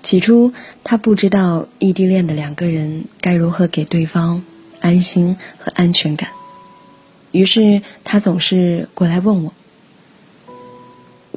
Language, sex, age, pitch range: Chinese, female, 20-39, 165-205 Hz